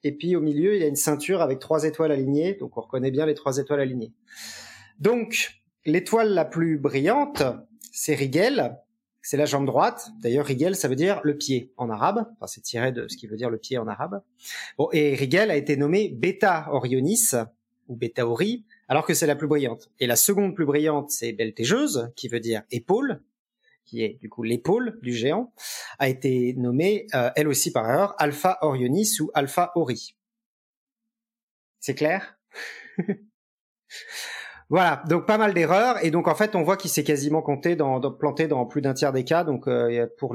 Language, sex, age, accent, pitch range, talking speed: French, male, 40-59, French, 130-185 Hz, 190 wpm